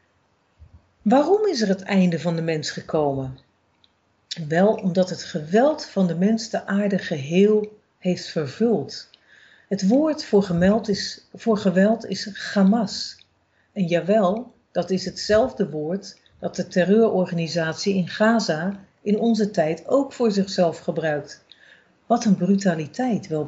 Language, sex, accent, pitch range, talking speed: Dutch, female, Dutch, 165-230 Hz, 130 wpm